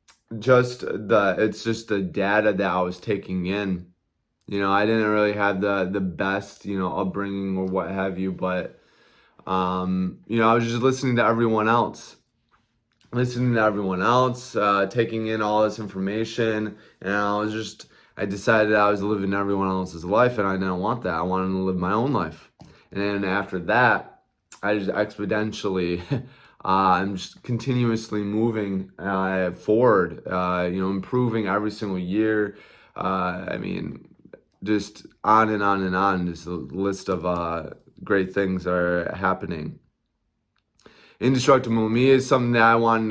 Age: 20-39